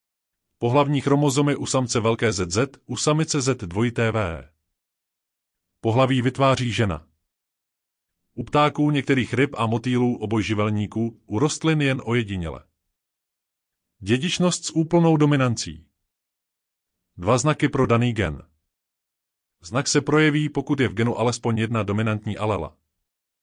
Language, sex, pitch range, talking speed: Czech, male, 90-140 Hz, 110 wpm